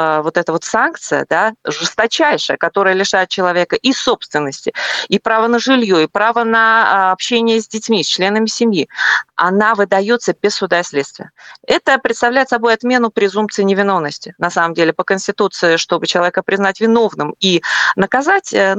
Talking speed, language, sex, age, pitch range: 150 wpm, Russian, female, 30-49, 185-235 Hz